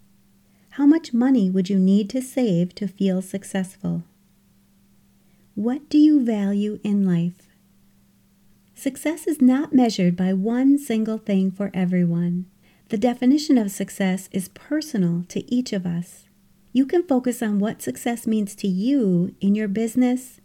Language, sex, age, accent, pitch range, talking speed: English, female, 40-59, American, 190-250 Hz, 145 wpm